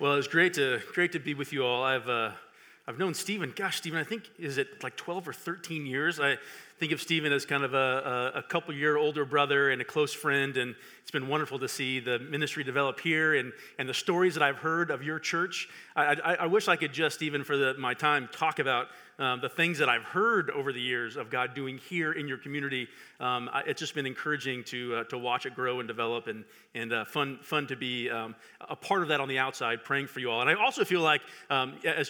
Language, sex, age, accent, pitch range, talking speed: English, male, 40-59, American, 140-195 Hz, 255 wpm